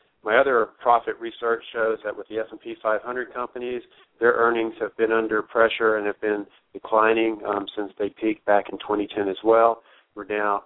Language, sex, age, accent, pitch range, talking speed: English, male, 40-59, American, 100-110 Hz, 190 wpm